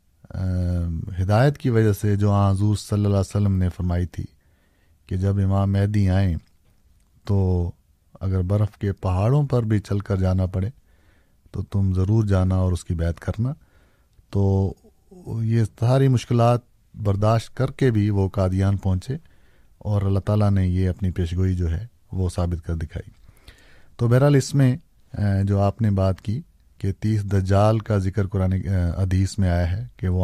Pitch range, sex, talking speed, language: 95-110 Hz, male, 165 wpm, Urdu